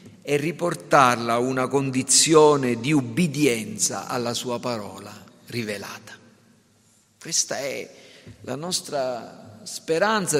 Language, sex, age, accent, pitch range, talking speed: Italian, male, 50-69, native, 125-200 Hz, 90 wpm